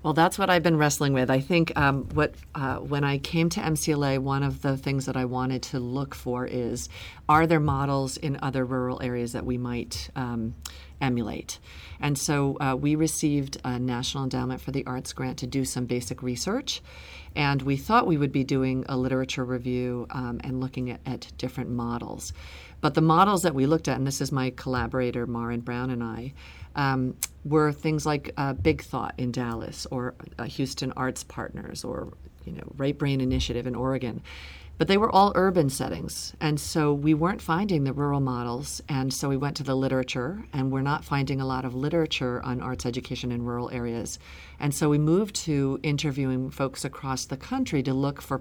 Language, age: English, 40-59